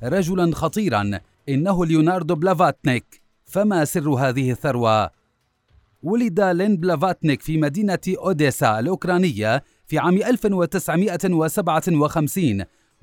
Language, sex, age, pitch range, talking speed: Arabic, male, 30-49, 140-185 Hz, 85 wpm